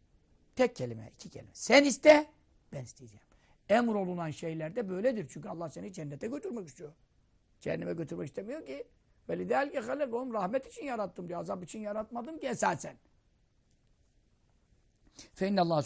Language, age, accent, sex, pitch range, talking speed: Turkish, 60-79, native, male, 180-235 Hz, 120 wpm